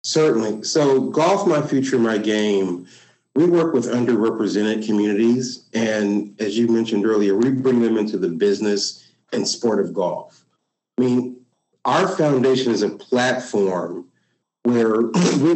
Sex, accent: male, American